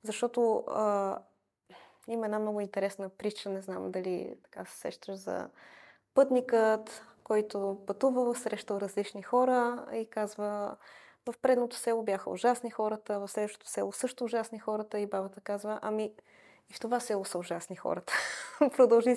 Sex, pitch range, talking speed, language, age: female, 190-220 Hz, 145 wpm, Bulgarian, 20-39